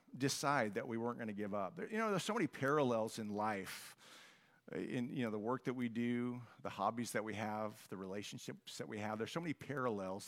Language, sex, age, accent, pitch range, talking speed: English, male, 50-69, American, 105-140 Hz, 220 wpm